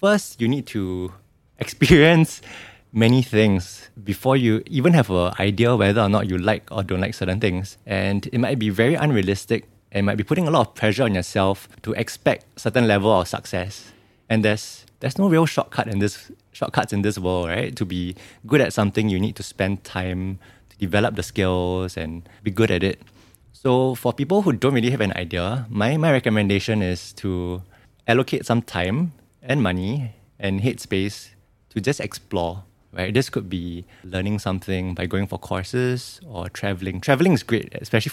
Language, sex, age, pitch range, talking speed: English, male, 20-39, 95-125 Hz, 185 wpm